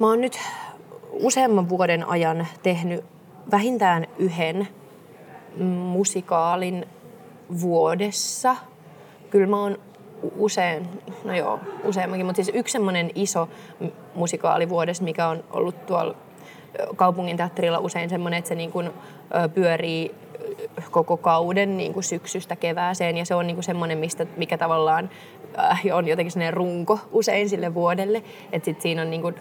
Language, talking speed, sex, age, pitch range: Finnish, 120 wpm, female, 20-39, 170-200 Hz